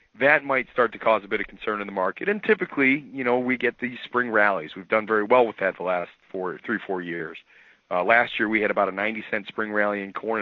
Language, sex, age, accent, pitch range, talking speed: English, male, 40-59, American, 105-125 Hz, 260 wpm